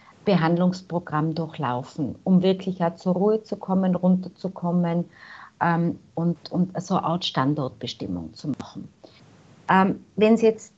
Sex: female